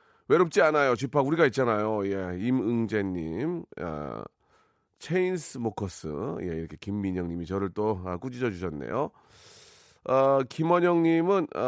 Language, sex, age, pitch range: Korean, male, 30-49, 100-145 Hz